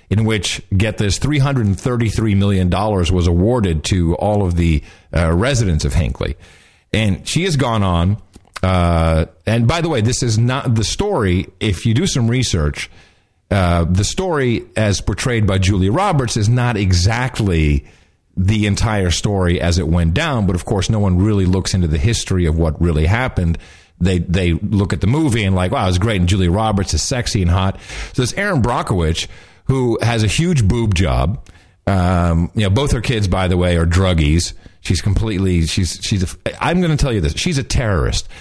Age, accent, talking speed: 50-69, American, 190 wpm